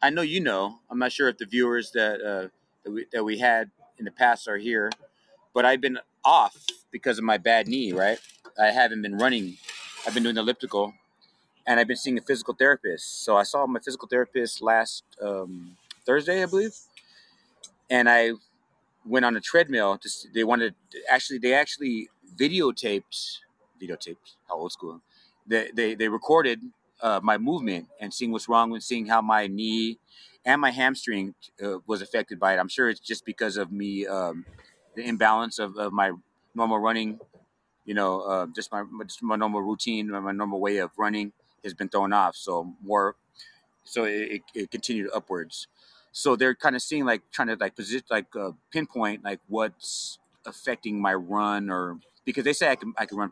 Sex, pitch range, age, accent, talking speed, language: male, 100-125 Hz, 30-49, American, 185 wpm, English